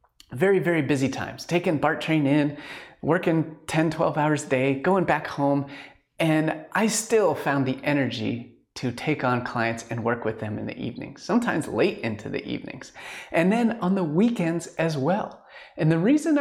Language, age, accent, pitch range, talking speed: English, 30-49, American, 140-205 Hz, 180 wpm